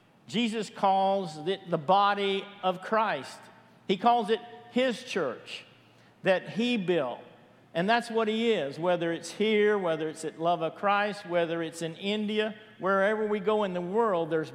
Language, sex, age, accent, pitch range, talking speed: English, male, 50-69, American, 165-210 Hz, 165 wpm